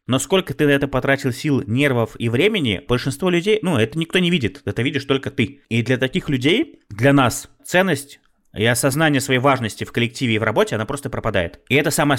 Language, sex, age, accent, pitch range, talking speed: Russian, male, 20-39, native, 105-140 Hz, 210 wpm